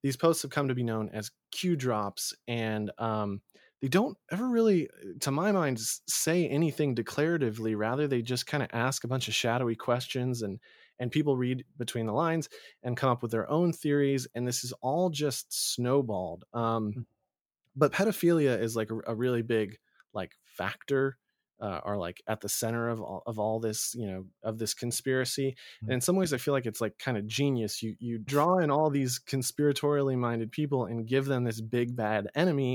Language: English